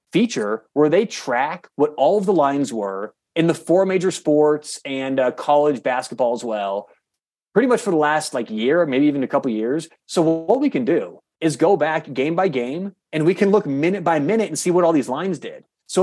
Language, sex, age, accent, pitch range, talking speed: English, male, 30-49, American, 150-200 Hz, 220 wpm